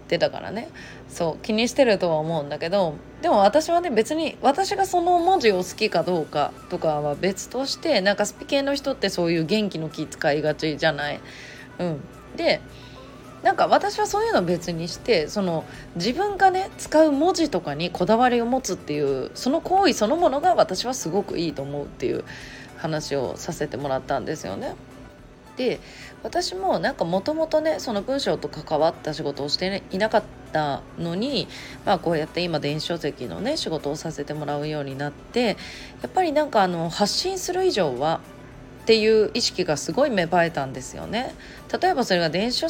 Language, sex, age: Japanese, female, 20-39